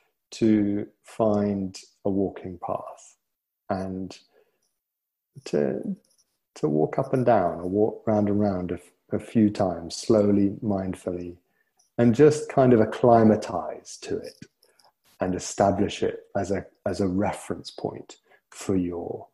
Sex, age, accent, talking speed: male, 50-69, British, 130 wpm